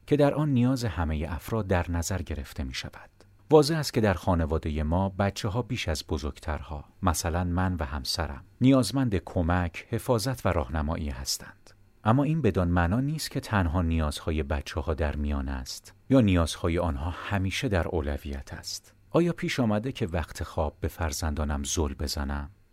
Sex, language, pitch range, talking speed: male, Persian, 80-105 Hz, 165 wpm